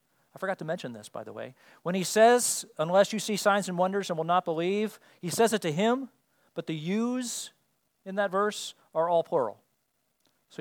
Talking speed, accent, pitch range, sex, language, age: 205 wpm, American, 145-195 Hz, male, English, 40-59